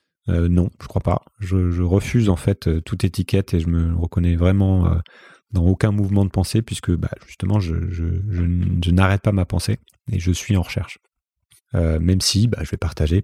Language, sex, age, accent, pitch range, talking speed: French, male, 30-49, French, 90-115 Hz, 210 wpm